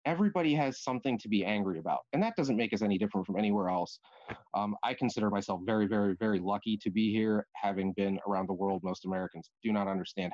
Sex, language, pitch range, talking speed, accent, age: male, English, 95-120 Hz, 220 wpm, American, 30-49